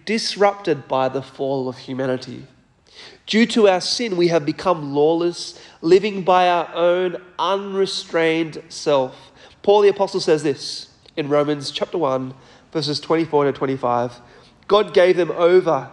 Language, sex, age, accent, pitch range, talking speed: English, male, 30-49, Australian, 140-180 Hz, 140 wpm